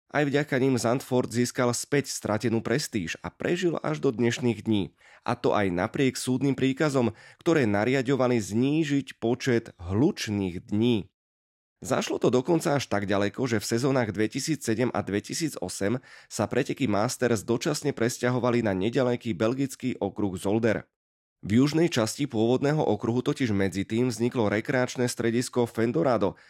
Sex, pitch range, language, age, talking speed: male, 105-135 Hz, Slovak, 20-39, 135 wpm